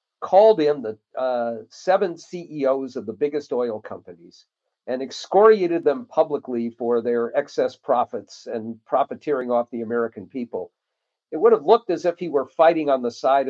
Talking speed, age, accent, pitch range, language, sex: 165 wpm, 50-69, American, 130-175 Hz, English, male